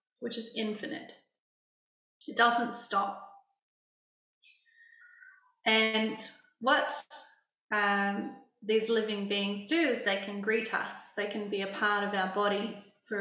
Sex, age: female, 30-49